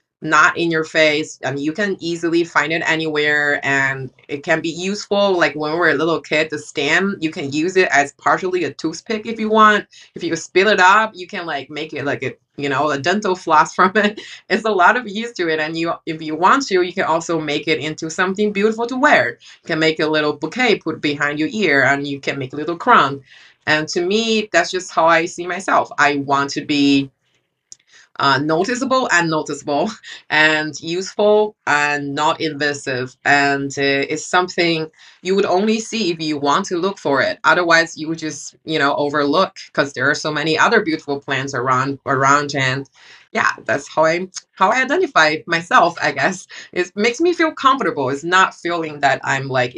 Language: English